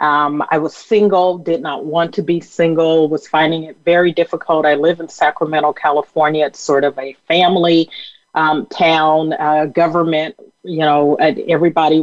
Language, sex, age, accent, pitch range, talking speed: English, female, 40-59, American, 150-175 Hz, 160 wpm